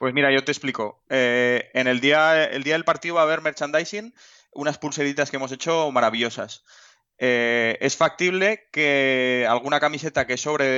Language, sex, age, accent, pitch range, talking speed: Spanish, male, 20-39, Spanish, 120-140 Hz, 175 wpm